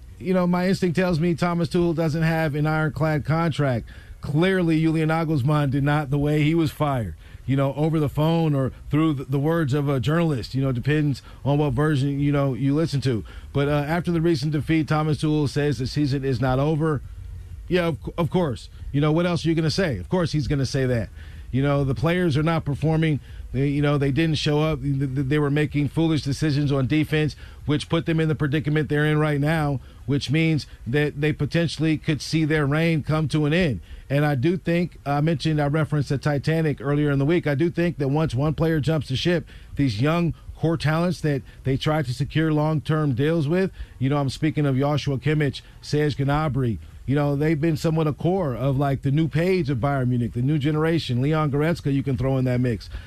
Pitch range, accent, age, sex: 140-160 Hz, American, 40-59, male